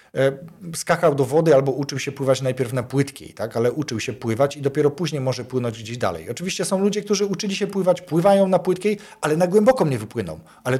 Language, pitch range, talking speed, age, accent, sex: Polish, 125-180 Hz, 210 wpm, 40-59, native, male